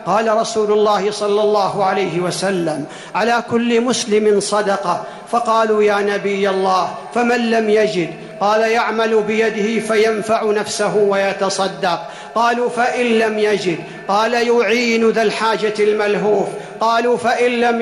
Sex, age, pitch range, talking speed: male, 50-69, 200-240 Hz, 120 wpm